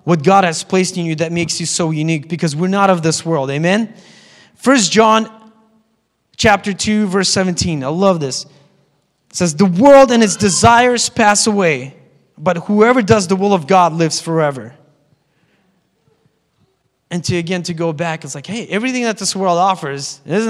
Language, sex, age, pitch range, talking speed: English, male, 20-39, 150-205 Hz, 175 wpm